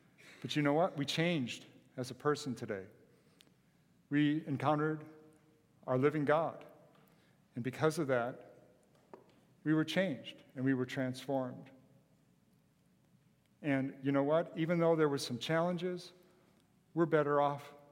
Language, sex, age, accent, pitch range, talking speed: English, male, 50-69, American, 130-170 Hz, 130 wpm